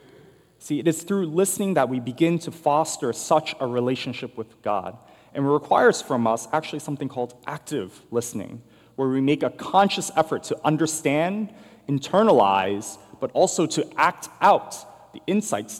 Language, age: English, 30-49